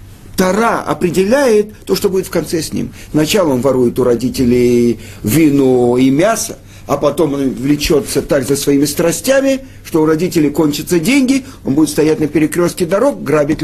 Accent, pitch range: native, 105-175 Hz